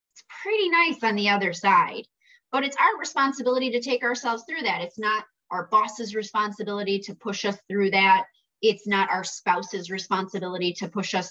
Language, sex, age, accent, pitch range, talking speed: English, female, 20-39, American, 190-260 Hz, 175 wpm